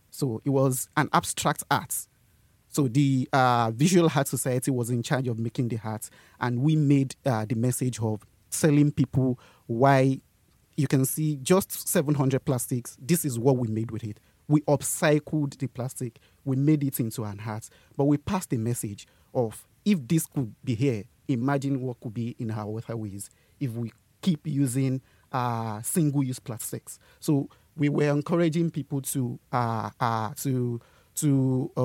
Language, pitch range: English, 115-145 Hz